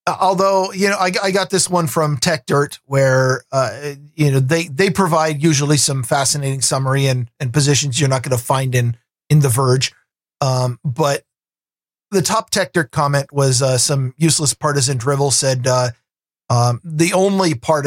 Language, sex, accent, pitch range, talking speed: English, male, American, 130-165 Hz, 180 wpm